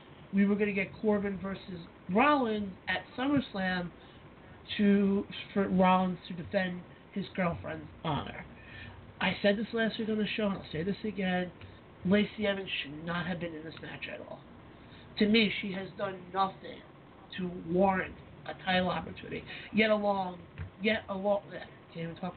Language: English